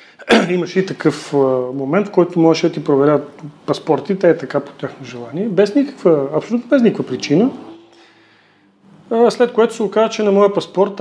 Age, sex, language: 40-59, male, Bulgarian